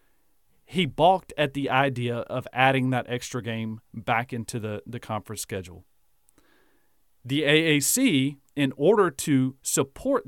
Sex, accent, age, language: male, American, 40-59, English